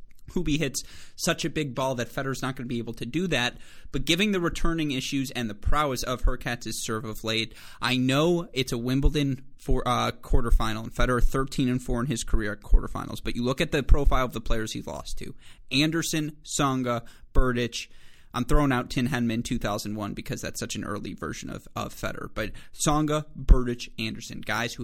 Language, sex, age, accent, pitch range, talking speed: English, male, 30-49, American, 115-145 Hz, 200 wpm